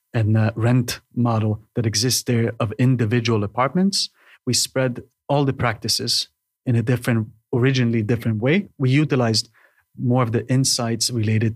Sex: male